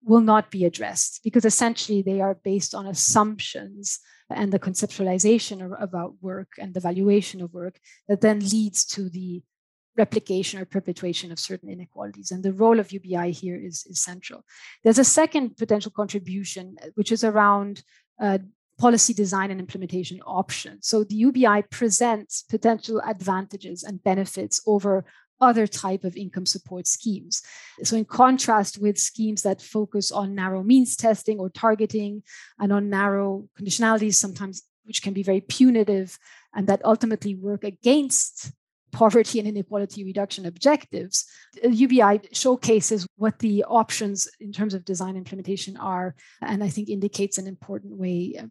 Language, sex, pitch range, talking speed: English, female, 190-220 Hz, 150 wpm